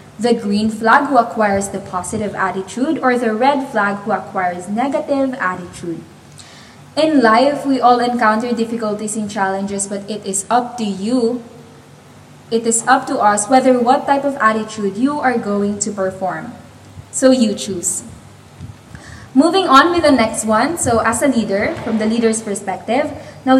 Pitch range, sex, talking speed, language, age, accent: 210-260 Hz, female, 160 wpm, Filipino, 20-39, native